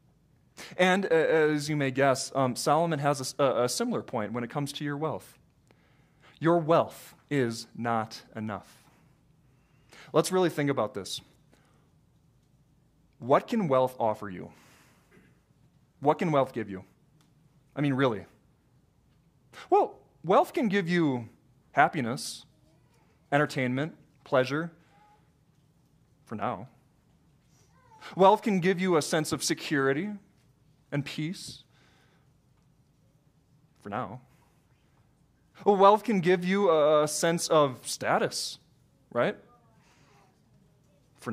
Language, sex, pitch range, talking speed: English, male, 140-195 Hz, 105 wpm